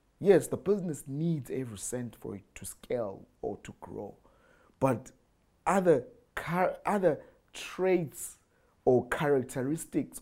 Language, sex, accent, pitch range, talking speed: English, male, South African, 115-160 Hz, 115 wpm